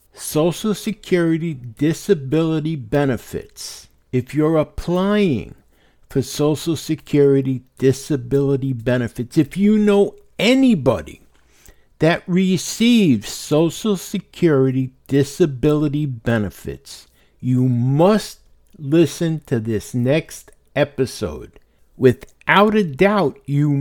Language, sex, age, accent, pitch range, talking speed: English, male, 60-79, American, 120-160 Hz, 85 wpm